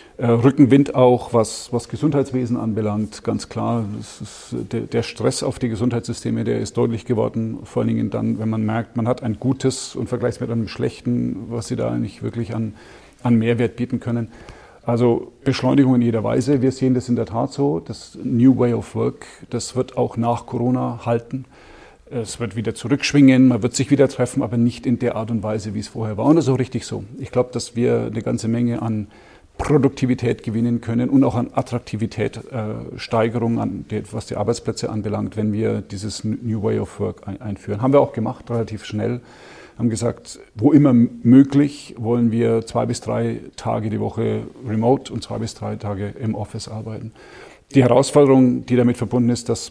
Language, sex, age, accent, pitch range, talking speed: German, male, 40-59, German, 110-125 Hz, 185 wpm